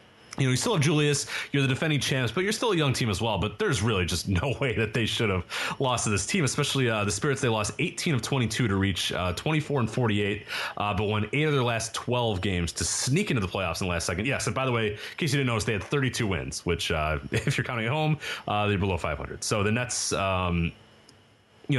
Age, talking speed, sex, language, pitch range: 30-49, 260 wpm, male, English, 95-125 Hz